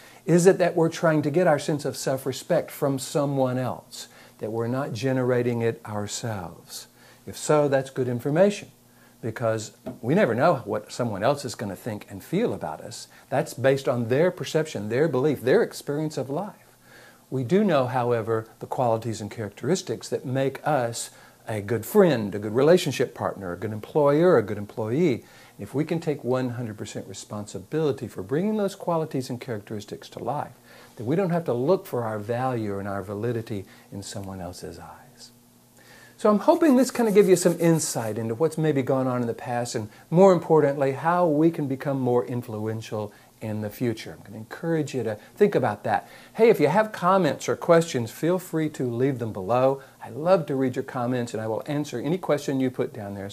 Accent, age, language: American, 60-79, English